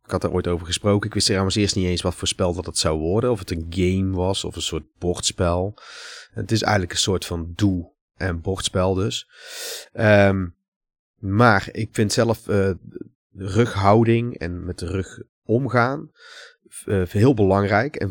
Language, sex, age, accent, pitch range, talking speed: Dutch, male, 30-49, Dutch, 85-110 Hz, 180 wpm